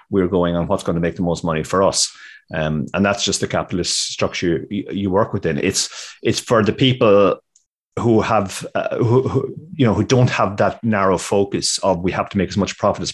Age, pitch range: 30-49, 85-110 Hz